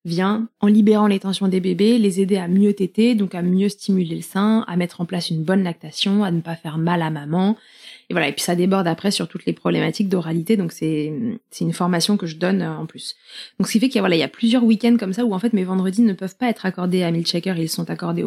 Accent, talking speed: French, 280 wpm